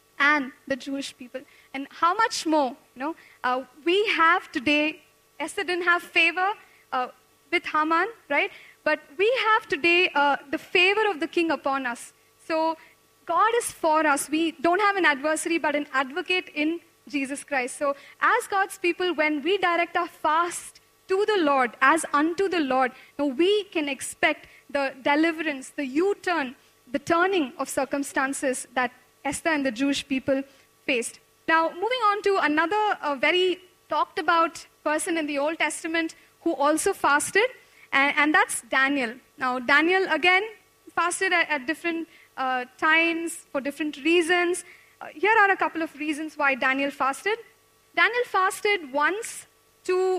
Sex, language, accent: female, English, Indian